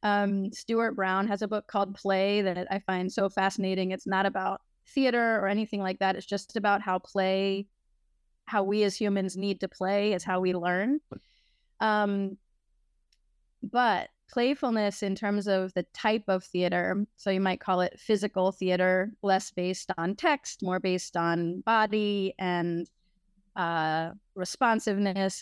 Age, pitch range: 30-49, 185-230 Hz